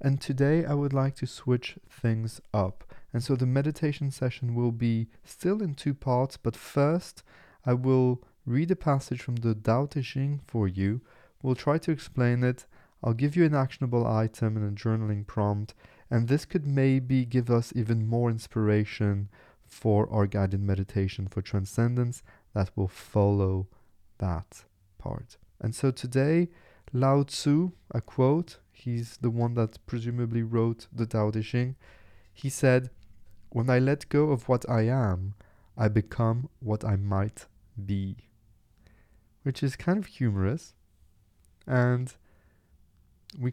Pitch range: 100-130 Hz